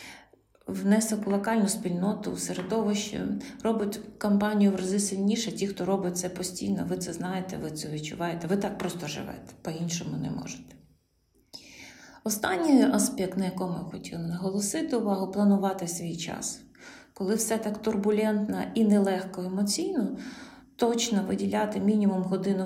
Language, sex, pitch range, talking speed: Ukrainian, female, 185-225 Hz, 135 wpm